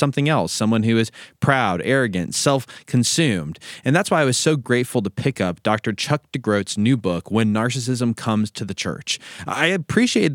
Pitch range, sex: 105-135 Hz, male